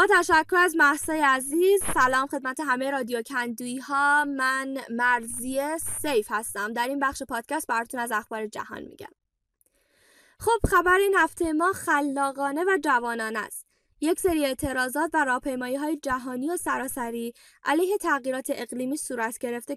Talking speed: 140 wpm